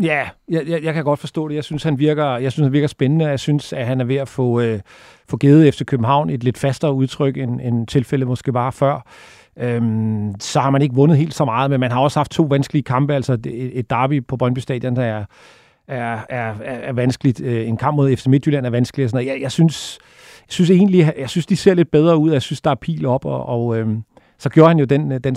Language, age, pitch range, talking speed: Danish, 40-59, 125-145 Hz, 245 wpm